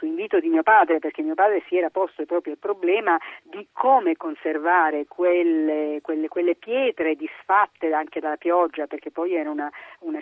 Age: 40-59